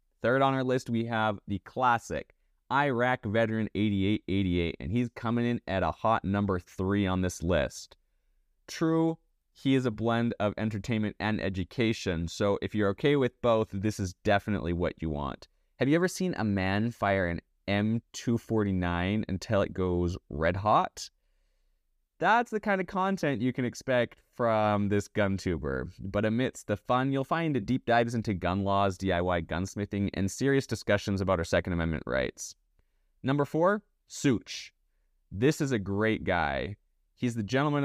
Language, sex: English, male